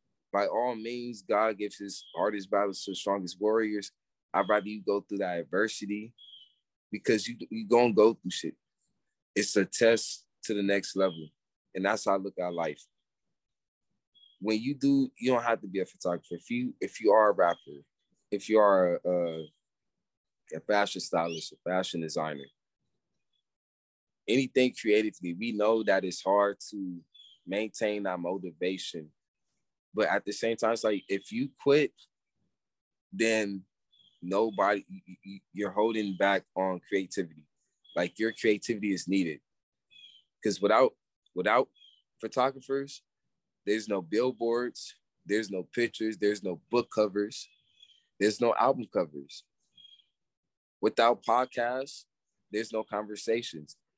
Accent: American